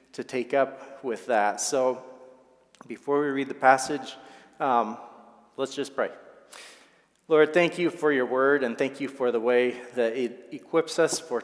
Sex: male